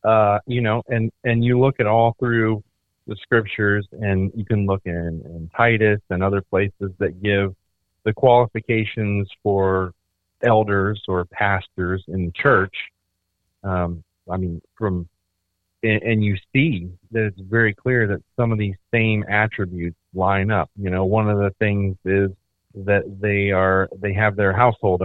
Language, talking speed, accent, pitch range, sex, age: English, 160 wpm, American, 90-110 Hz, male, 30-49